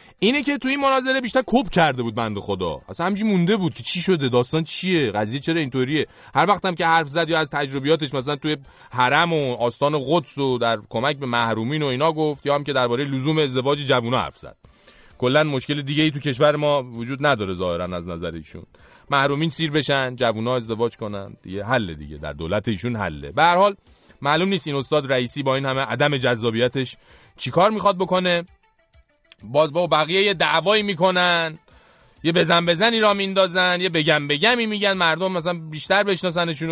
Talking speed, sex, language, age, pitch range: 185 wpm, male, English, 30-49, 115-175 Hz